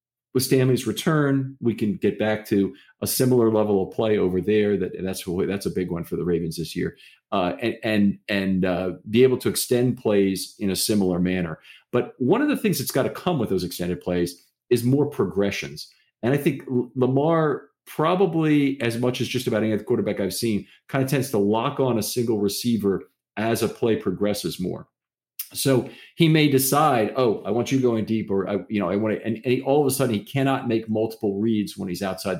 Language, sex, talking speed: English, male, 215 wpm